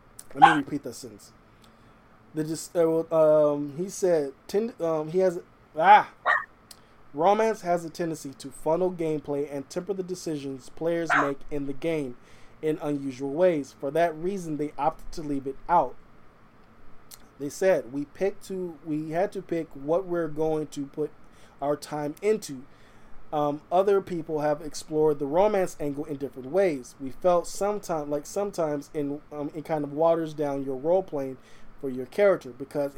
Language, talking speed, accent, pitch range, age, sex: English, 165 wpm, American, 140-170 Hz, 20-39, male